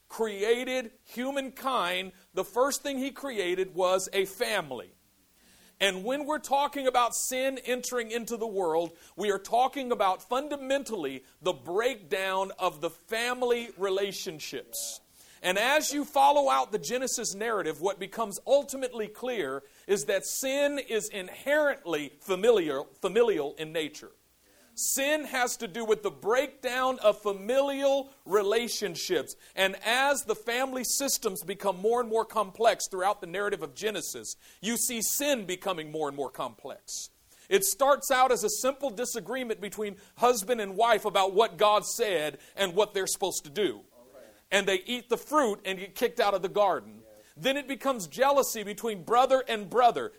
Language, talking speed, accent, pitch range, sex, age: English, 150 wpm, American, 195-265 Hz, male, 50-69